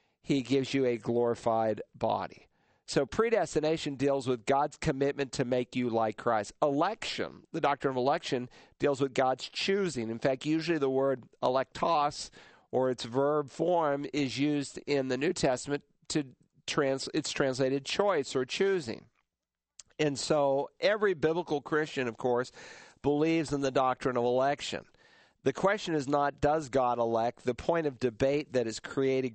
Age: 50-69